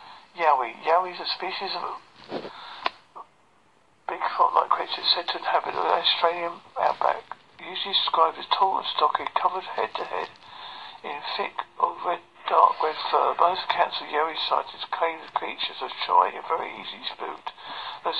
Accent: British